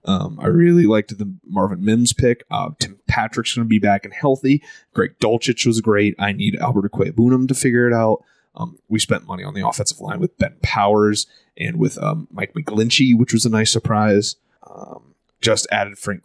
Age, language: 20-39, English